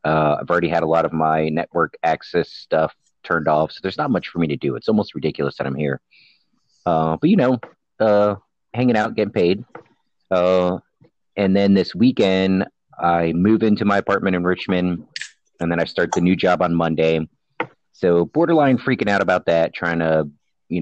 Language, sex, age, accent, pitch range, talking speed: English, male, 30-49, American, 80-95 Hz, 190 wpm